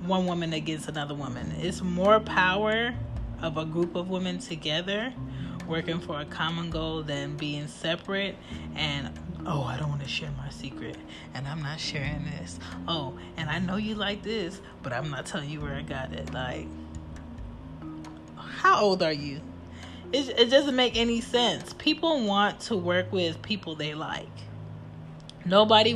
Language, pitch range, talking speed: English, 140-180 Hz, 165 wpm